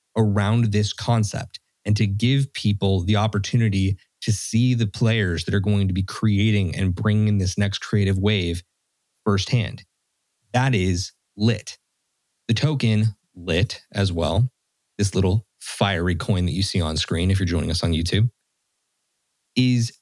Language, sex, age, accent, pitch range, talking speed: English, male, 20-39, American, 100-120 Hz, 150 wpm